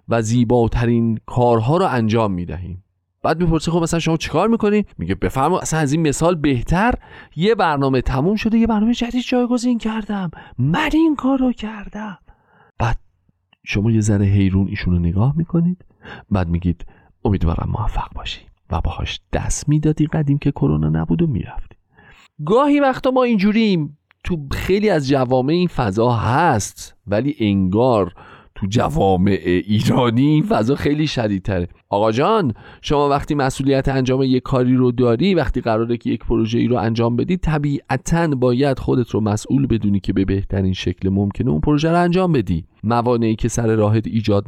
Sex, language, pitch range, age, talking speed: male, Persian, 115-165 Hz, 40-59, 155 wpm